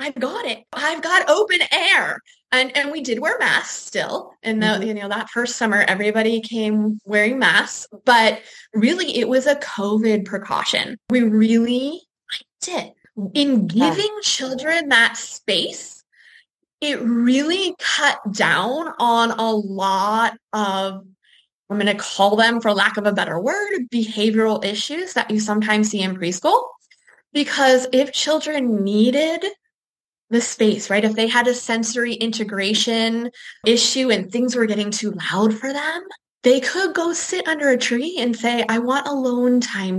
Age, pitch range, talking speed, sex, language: 20-39, 215-285 Hz, 155 wpm, female, English